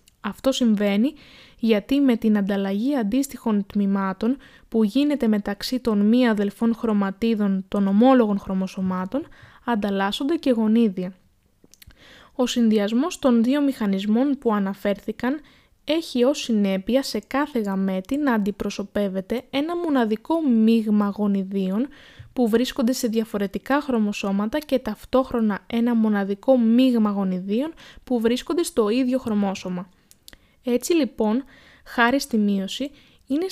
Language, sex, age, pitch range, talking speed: Greek, female, 20-39, 205-260 Hz, 110 wpm